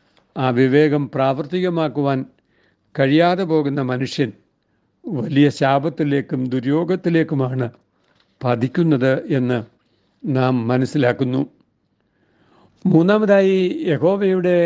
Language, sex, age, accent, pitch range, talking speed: Malayalam, male, 60-79, native, 135-165 Hz, 60 wpm